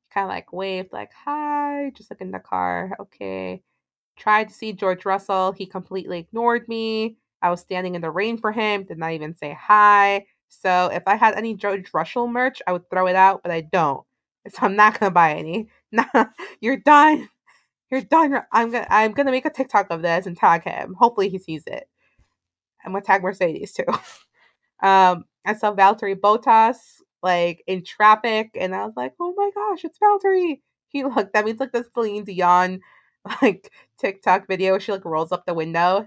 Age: 20-39